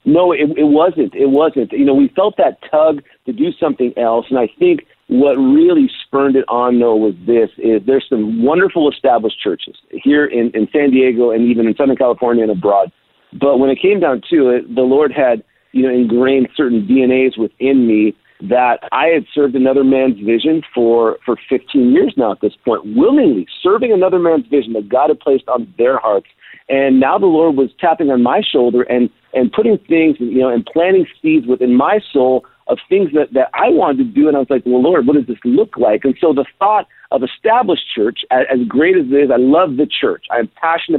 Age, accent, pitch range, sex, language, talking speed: 50-69, American, 125-195 Hz, male, English, 220 wpm